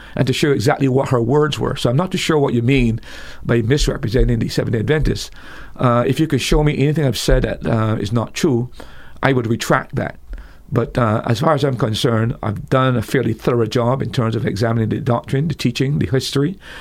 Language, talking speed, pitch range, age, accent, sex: English, 220 wpm, 115-140 Hz, 50-69, American, male